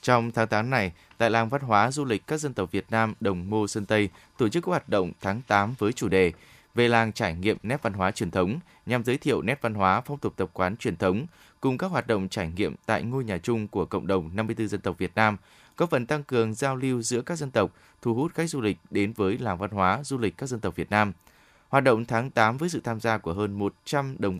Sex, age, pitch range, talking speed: male, 20-39, 95-120 Hz, 265 wpm